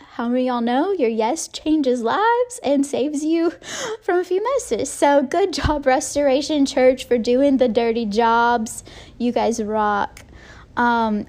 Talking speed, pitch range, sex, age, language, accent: 160 wpm, 210-255 Hz, female, 10-29, English, American